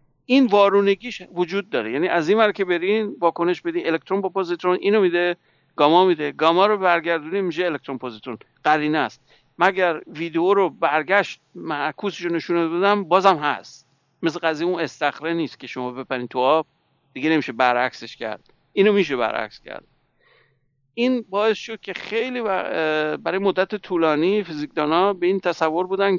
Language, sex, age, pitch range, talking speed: English, male, 60-79, 140-180 Hz, 155 wpm